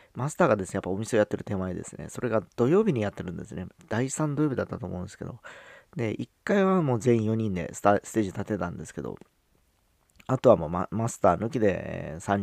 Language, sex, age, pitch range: Japanese, male, 40-59, 85-105 Hz